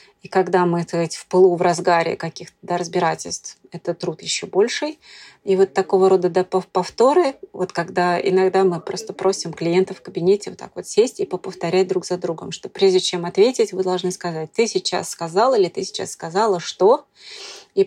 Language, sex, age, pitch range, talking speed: Russian, female, 30-49, 175-195 Hz, 185 wpm